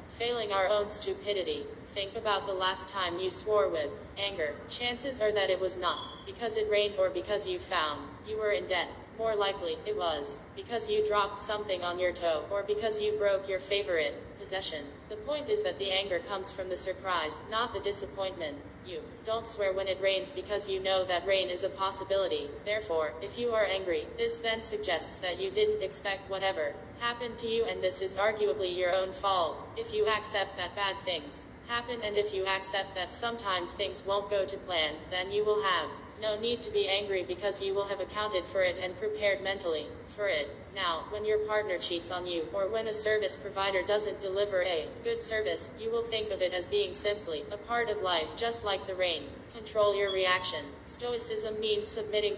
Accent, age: American, 10-29